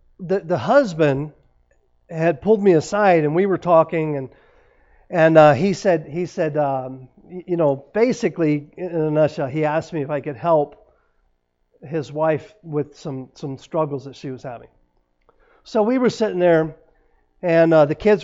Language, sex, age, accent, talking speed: English, male, 50-69, American, 170 wpm